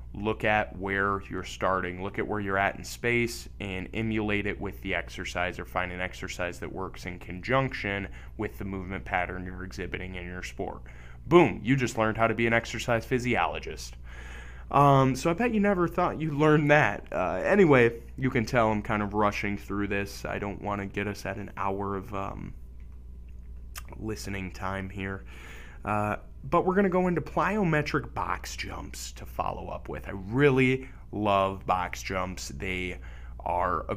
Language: English